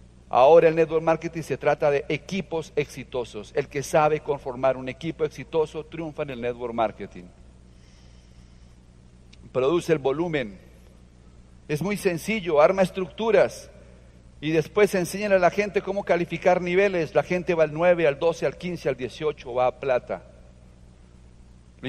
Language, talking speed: Spanish, 145 wpm